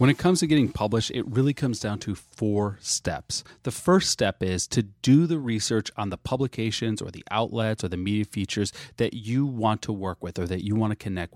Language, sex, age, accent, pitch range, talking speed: English, male, 30-49, American, 105-150 Hz, 225 wpm